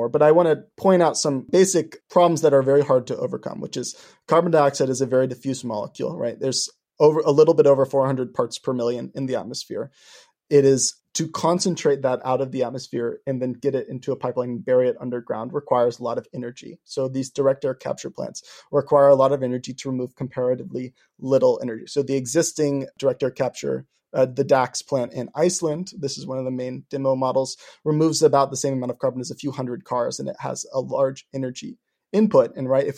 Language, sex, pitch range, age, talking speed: English, male, 130-150 Hz, 30-49, 220 wpm